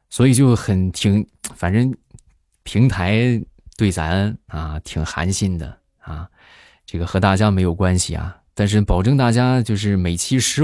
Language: Chinese